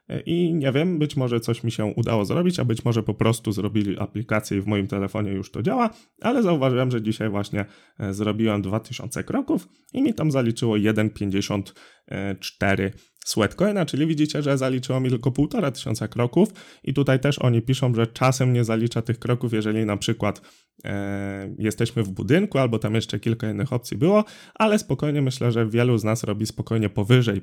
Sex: male